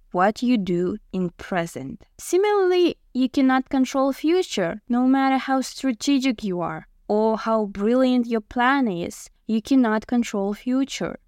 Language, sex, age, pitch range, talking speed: Russian, female, 20-39, 200-265 Hz, 140 wpm